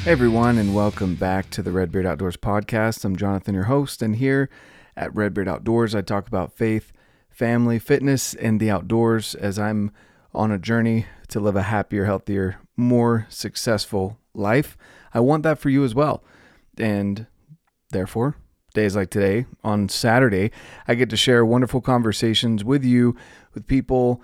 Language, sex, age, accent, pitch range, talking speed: English, male, 30-49, American, 105-125 Hz, 165 wpm